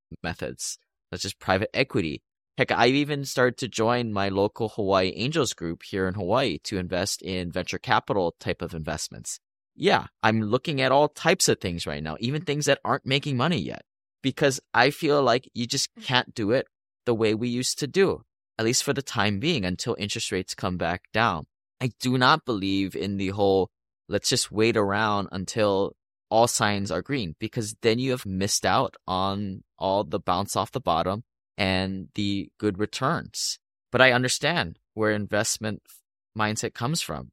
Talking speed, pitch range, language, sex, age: 180 wpm, 95-120 Hz, English, male, 20-39